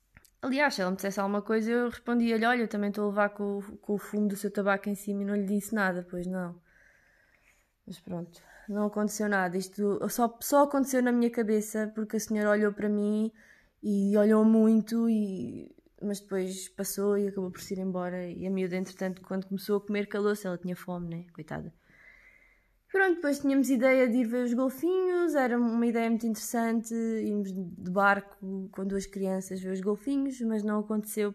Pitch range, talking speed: 190-220 Hz, 195 wpm